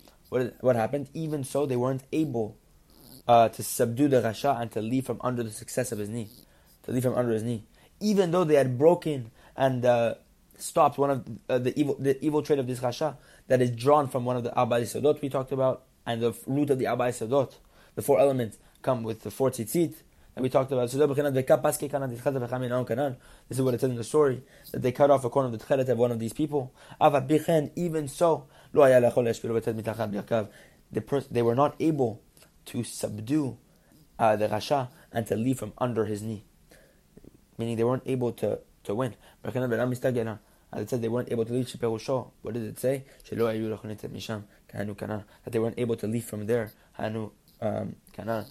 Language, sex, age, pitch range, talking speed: English, male, 20-39, 115-140 Hz, 185 wpm